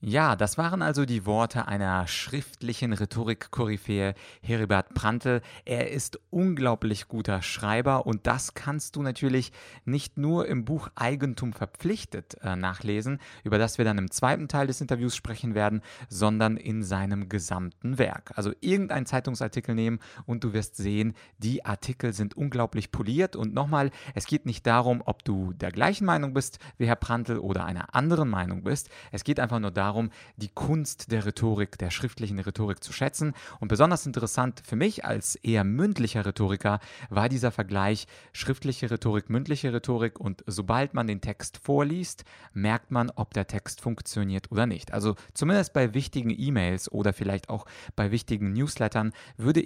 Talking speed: 160 wpm